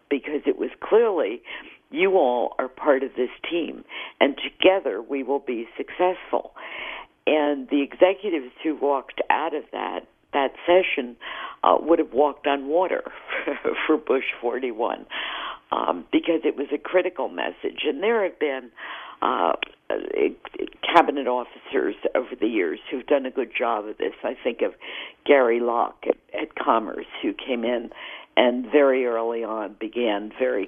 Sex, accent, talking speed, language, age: female, American, 150 wpm, English, 60-79